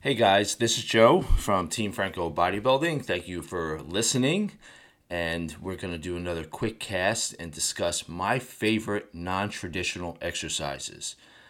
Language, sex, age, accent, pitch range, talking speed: English, male, 30-49, American, 85-110 Hz, 140 wpm